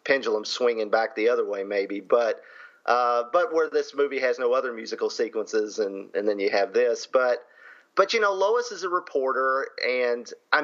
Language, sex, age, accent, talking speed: English, male, 40-59, American, 190 wpm